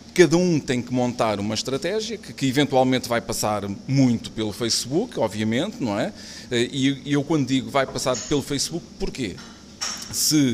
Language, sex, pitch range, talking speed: Portuguese, male, 115-145 Hz, 160 wpm